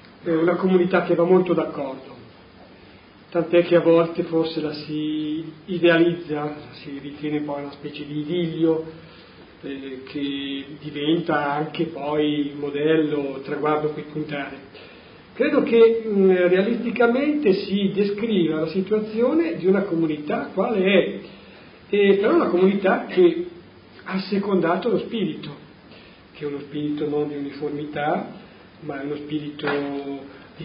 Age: 40-59